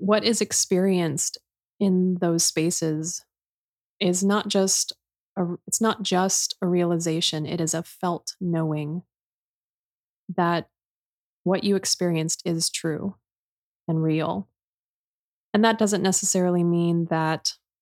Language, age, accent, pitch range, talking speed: English, 20-39, American, 160-185 Hz, 115 wpm